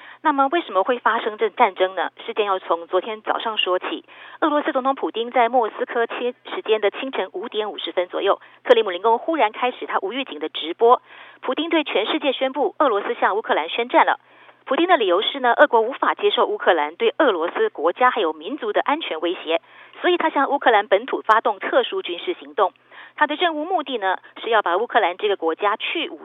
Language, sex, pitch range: Chinese, female, 210-345 Hz